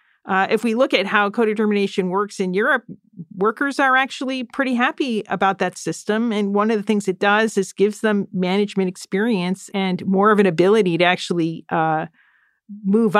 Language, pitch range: English, 180-220 Hz